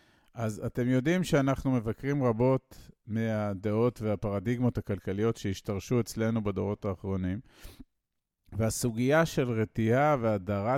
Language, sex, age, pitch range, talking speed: Hebrew, male, 50-69, 105-135 Hz, 95 wpm